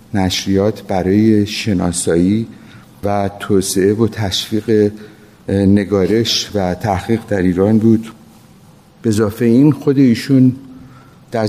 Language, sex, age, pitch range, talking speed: Persian, male, 50-69, 95-110 Hz, 95 wpm